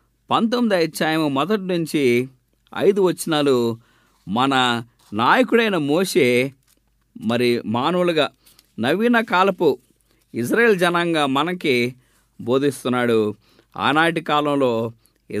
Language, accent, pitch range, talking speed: English, Indian, 125-215 Hz, 75 wpm